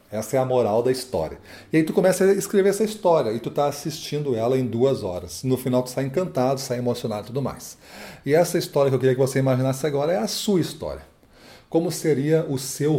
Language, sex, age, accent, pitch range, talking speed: Portuguese, male, 40-59, Brazilian, 120-150 Hz, 230 wpm